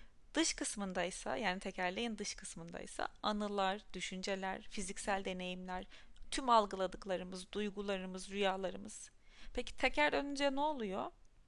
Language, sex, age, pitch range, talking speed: Turkish, female, 30-49, 185-225 Hz, 100 wpm